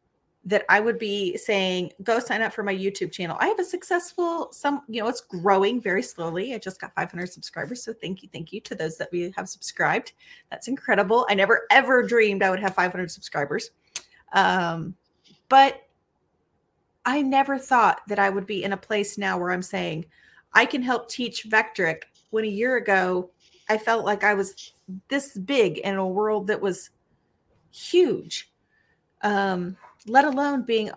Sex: female